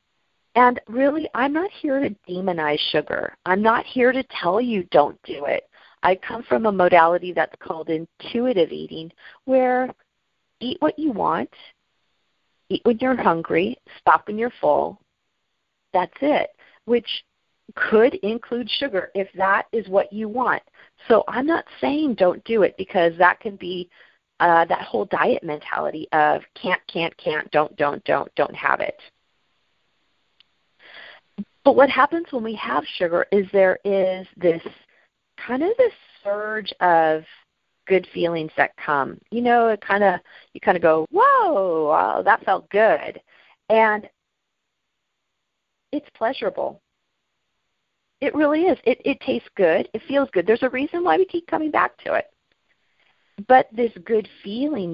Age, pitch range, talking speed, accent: 40-59, 180-255 Hz, 150 wpm, American